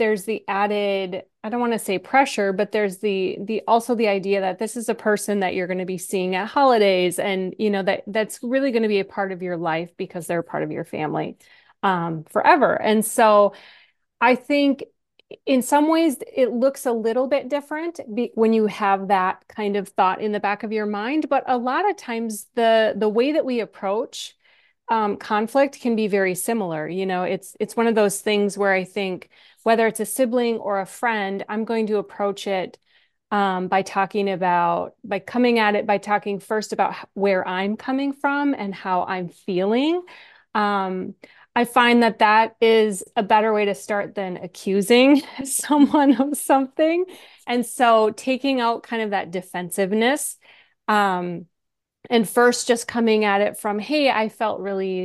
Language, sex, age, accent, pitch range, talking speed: English, female, 30-49, American, 195-240 Hz, 185 wpm